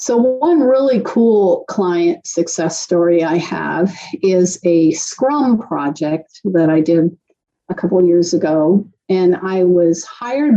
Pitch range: 175-230 Hz